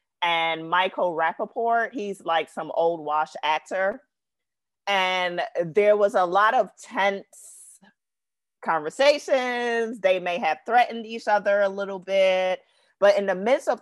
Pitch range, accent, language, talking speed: 160-210 Hz, American, English, 135 wpm